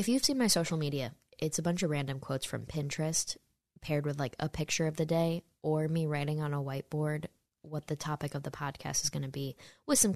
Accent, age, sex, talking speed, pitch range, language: American, 10-29, female, 235 wpm, 150-190 Hz, English